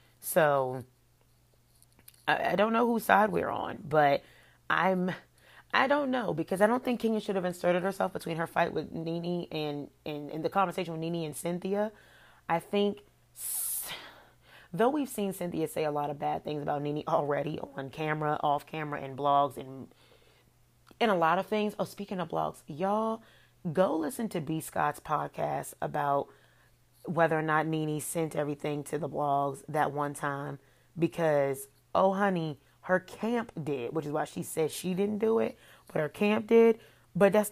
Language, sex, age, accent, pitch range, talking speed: English, female, 30-49, American, 145-195 Hz, 175 wpm